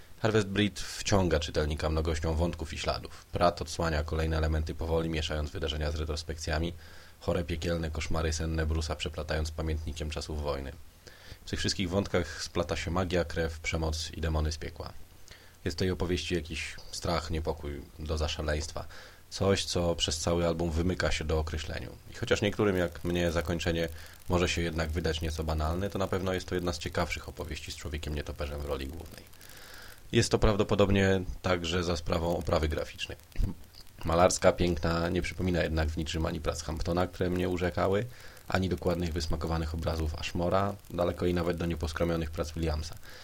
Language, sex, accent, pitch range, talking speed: Polish, male, native, 80-90 Hz, 160 wpm